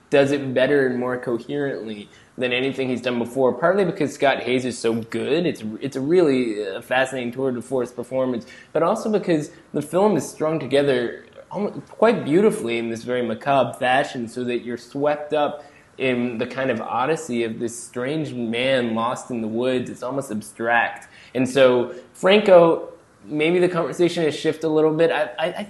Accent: American